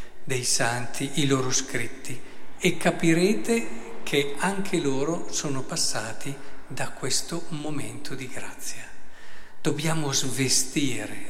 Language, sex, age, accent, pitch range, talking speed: Italian, male, 50-69, native, 130-175 Hz, 100 wpm